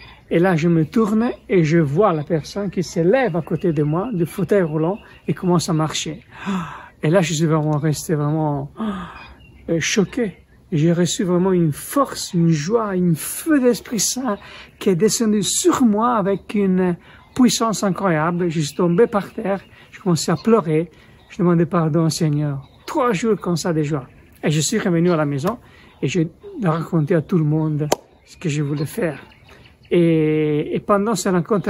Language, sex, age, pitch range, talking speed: French, male, 60-79, 165-220 Hz, 180 wpm